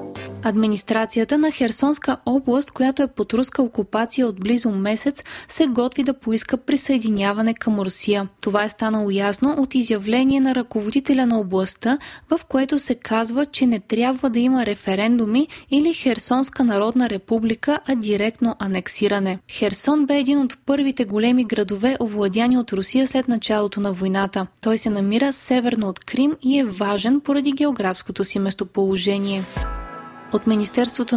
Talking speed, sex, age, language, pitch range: 145 wpm, female, 20-39, Bulgarian, 210-270 Hz